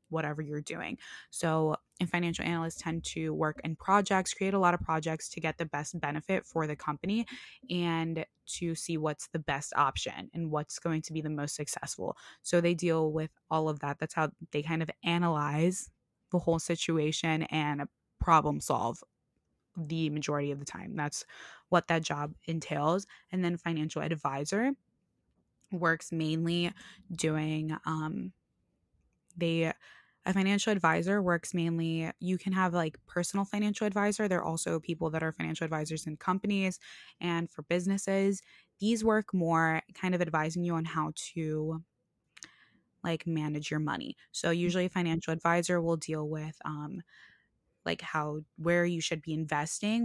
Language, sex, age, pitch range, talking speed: English, female, 20-39, 155-185 Hz, 160 wpm